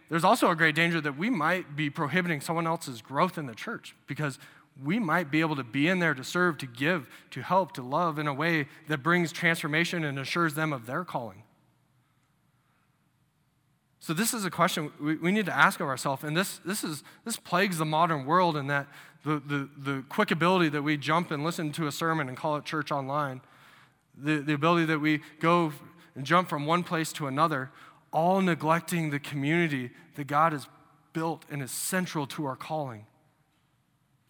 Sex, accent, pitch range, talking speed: male, American, 140-170 Hz, 195 wpm